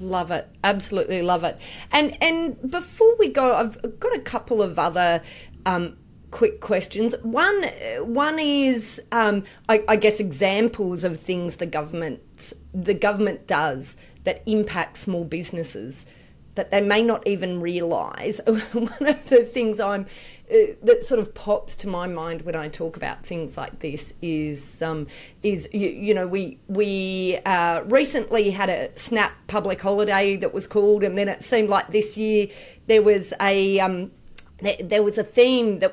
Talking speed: 165 wpm